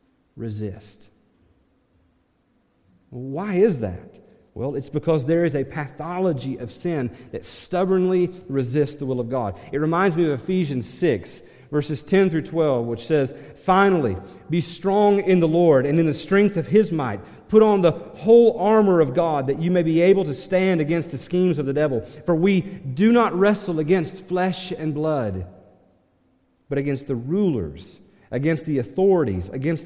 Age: 40-59